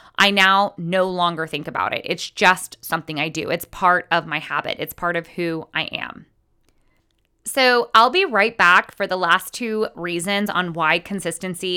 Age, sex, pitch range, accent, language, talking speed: 20-39, female, 175-220 Hz, American, English, 185 wpm